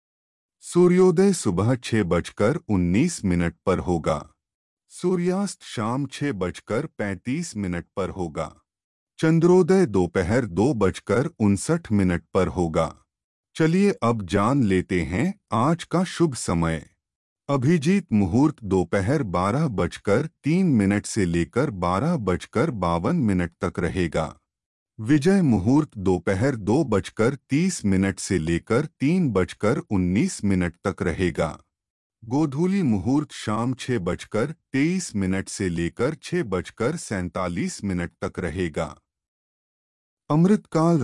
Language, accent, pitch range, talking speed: Hindi, native, 90-145 Hz, 120 wpm